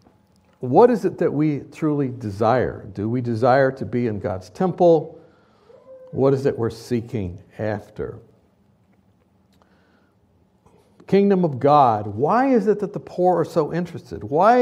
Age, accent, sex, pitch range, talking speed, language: 60-79, American, male, 135-205 Hz, 140 wpm, English